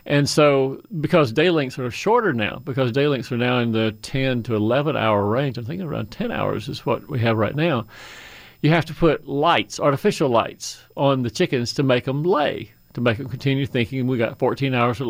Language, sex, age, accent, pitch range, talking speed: English, male, 40-59, American, 120-145 Hz, 220 wpm